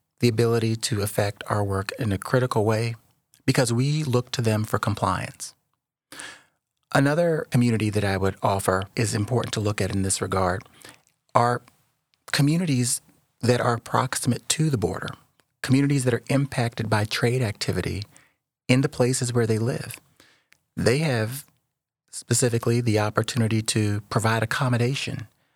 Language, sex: English, male